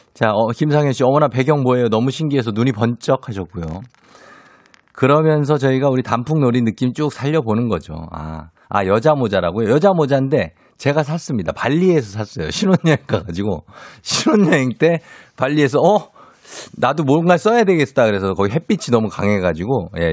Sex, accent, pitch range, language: male, native, 100-150 Hz, Korean